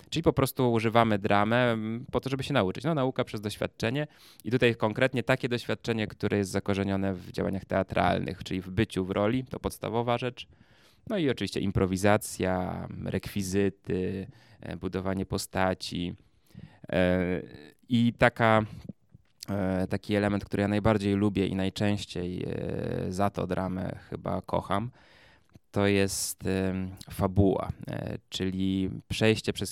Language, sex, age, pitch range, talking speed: Polish, male, 20-39, 95-110 Hz, 125 wpm